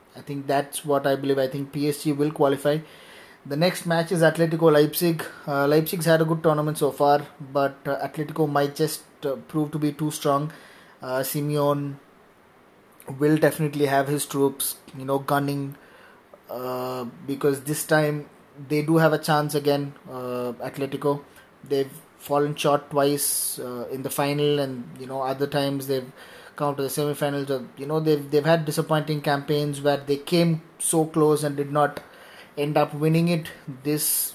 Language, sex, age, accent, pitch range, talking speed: English, male, 20-39, Indian, 140-155 Hz, 165 wpm